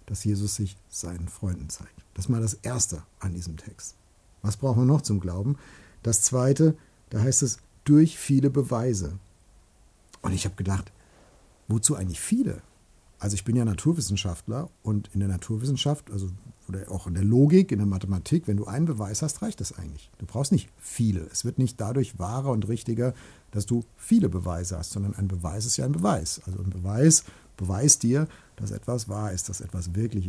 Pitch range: 95-120 Hz